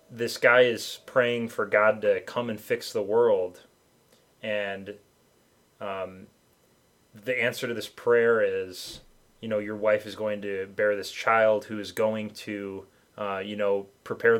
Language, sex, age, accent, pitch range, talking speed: English, male, 20-39, American, 105-130 Hz, 160 wpm